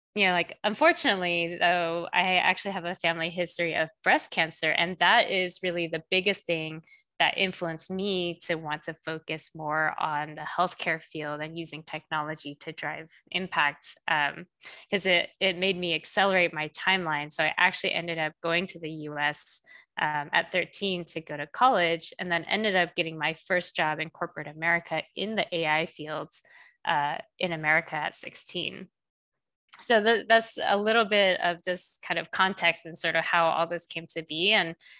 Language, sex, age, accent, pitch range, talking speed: English, female, 20-39, American, 160-185 Hz, 180 wpm